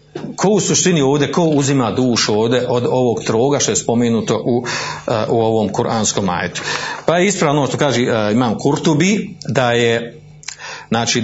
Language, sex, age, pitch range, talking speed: Croatian, male, 40-59, 120-155 Hz, 155 wpm